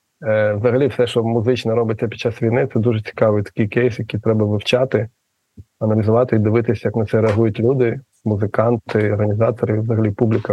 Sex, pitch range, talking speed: male, 110-125 Hz, 160 wpm